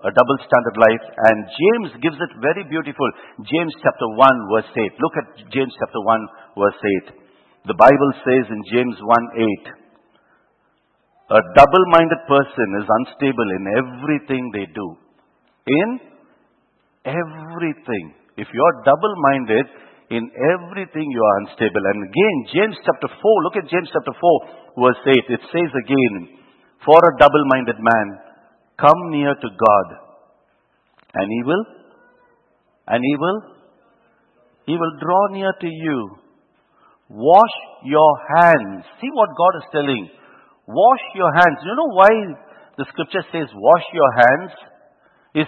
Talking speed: 145 wpm